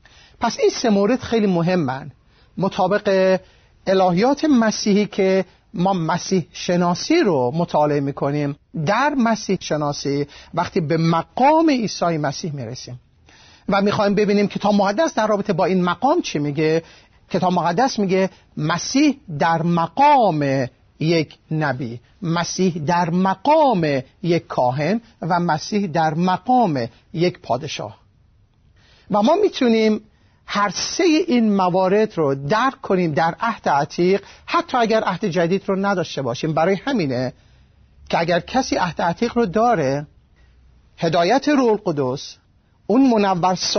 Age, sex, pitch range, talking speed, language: 50-69, male, 145-215 Hz, 125 wpm, Persian